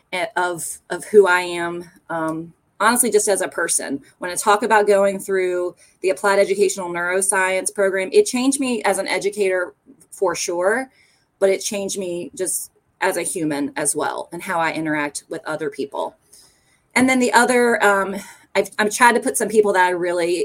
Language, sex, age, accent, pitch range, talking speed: English, female, 20-39, American, 160-210 Hz, 180 wpm